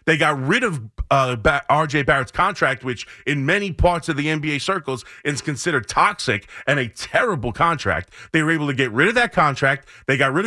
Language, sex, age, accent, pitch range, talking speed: English, male, 30-49, American, 140-185 Hz, 200 wpm